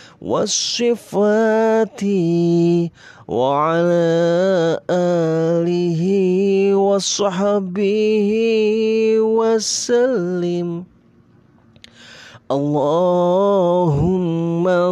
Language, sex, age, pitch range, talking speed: Indonesian, male, 30-49, 185-235 Hz, 40 wpm